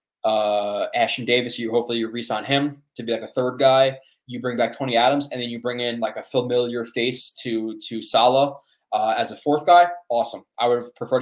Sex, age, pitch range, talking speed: male, 20-39, 110-130 Hz, 215 wpm